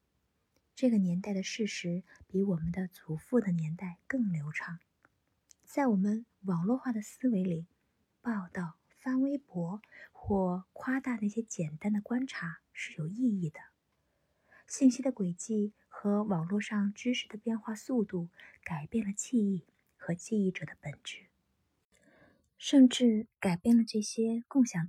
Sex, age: female, 20-39